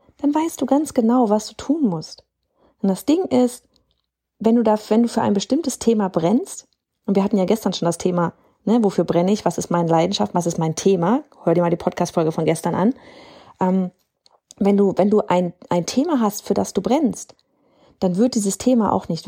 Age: 30-49